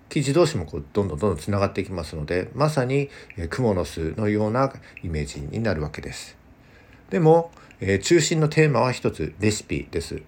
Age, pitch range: 50-69, 80-135 Hz